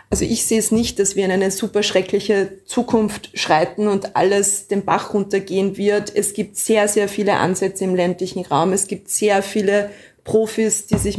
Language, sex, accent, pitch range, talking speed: German, female, German, 195-215 Hz, 190 wpm